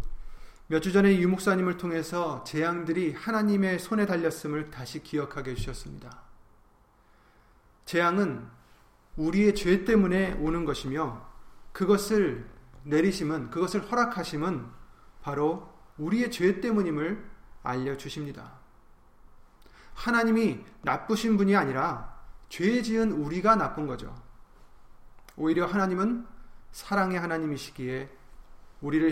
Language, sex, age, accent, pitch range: Korean, male, 30-49, native, 150-200 Hz